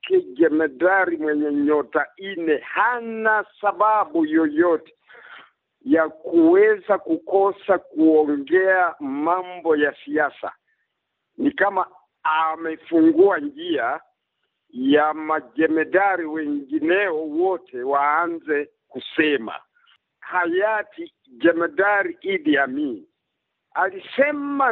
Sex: male